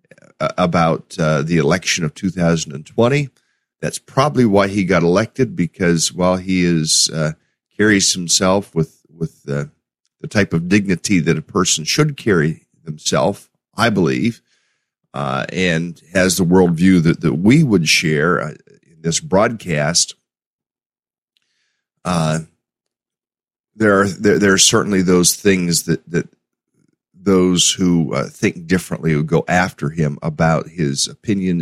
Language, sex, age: English, male, 40-59